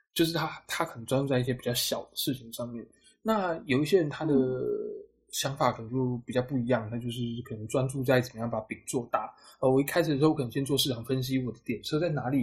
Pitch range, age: 120-145 Hz, 20-39